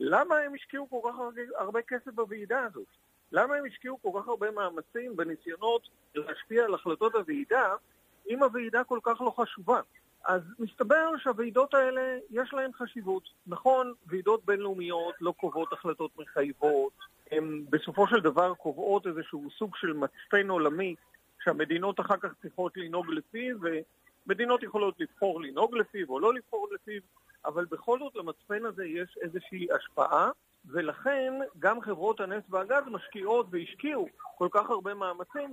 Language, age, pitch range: Hebrew, 50-69, 170-240 Hz